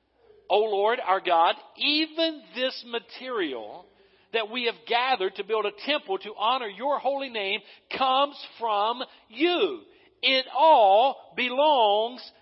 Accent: American